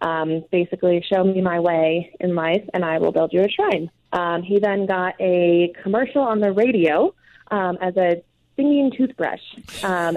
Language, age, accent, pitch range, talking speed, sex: English, 20-39, American, 170-185 Hz, 175 wpm, female